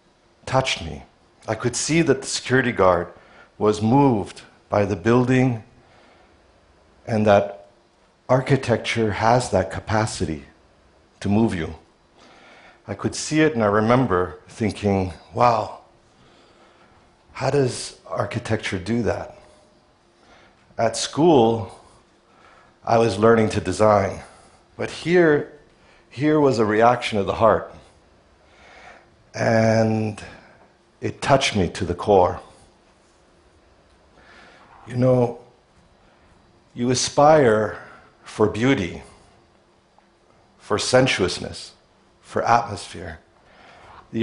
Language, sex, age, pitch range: Chinese, male, 50-69, 90-120 Hz